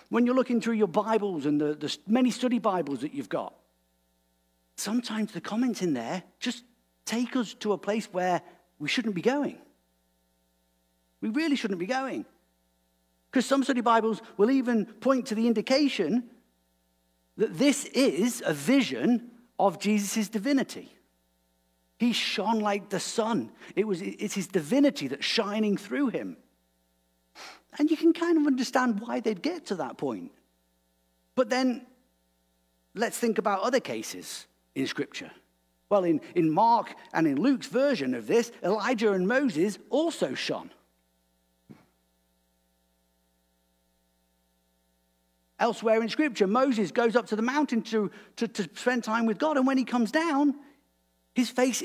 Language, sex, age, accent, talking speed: English, male, 50-69, British, 145 wpm